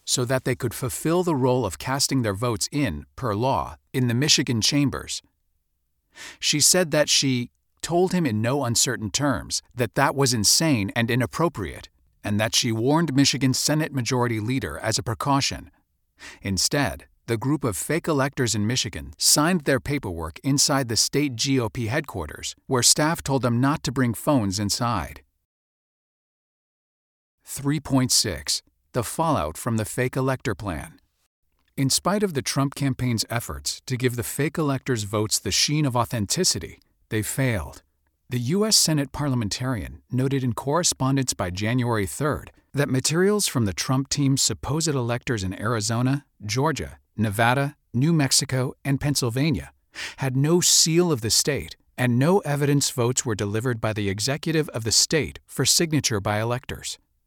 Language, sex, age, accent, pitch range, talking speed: English, male, 50-69, American, 105-140 Hz, 150 wpm